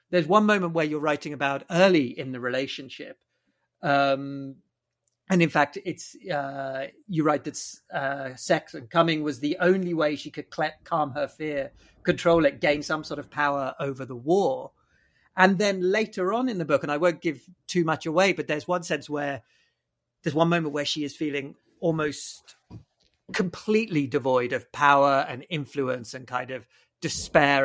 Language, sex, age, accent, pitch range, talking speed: English, male, 40-59, British, 135-170 Hz, 175 wpm